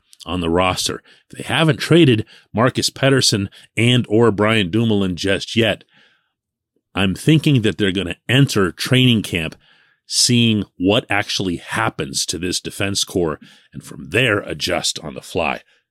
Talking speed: 145 wpm